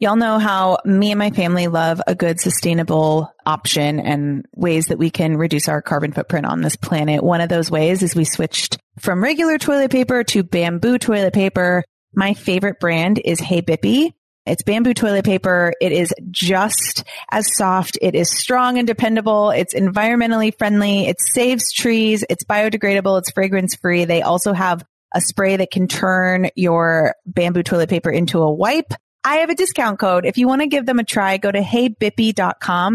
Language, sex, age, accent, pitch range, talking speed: English, female, 30-49, American, 165-215 Hz, 180 wpm